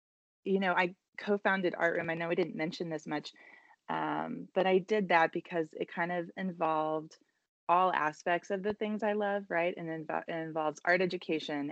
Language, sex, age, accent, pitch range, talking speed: English, female, 20-39, American, 150-180 Hz, 185 wpm